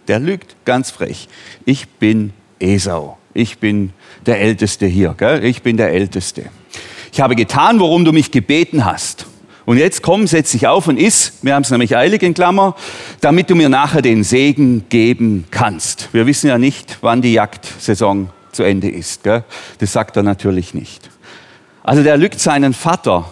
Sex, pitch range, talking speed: male, 110-150 Hz, 180 wpm